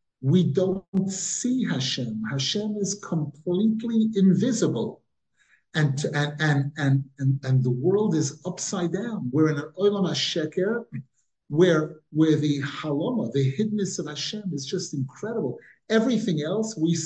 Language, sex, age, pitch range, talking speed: English, male, 50-69, 155-205 Hz, 130 wpm